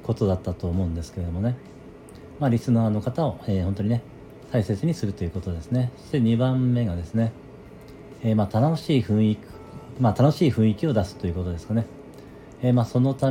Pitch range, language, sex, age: 95-125 Hz, Japanese, male, 40-59